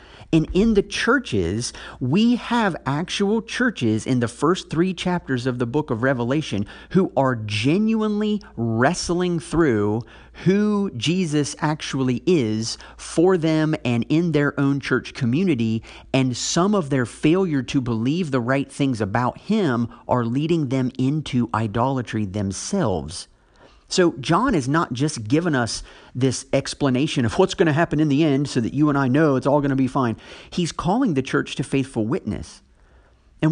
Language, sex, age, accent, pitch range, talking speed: English, male, 50-69, American, 125-175 Hz, 160 wpm